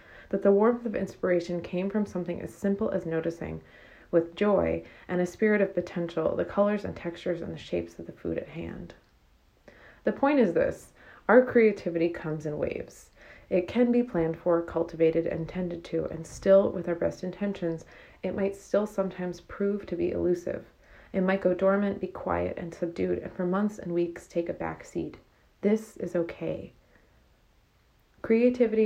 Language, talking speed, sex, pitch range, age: English, 175 wpm, female, 165-190 Hz, 30-49